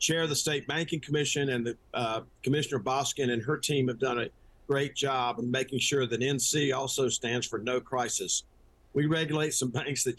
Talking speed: 200 wpm